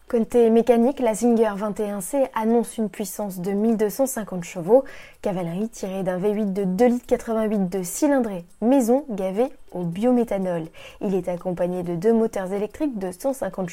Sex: female